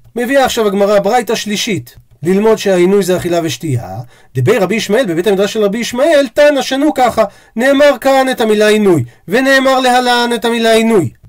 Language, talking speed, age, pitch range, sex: Hebrew, 165 wpm, 40-59, 185-235 Hz, male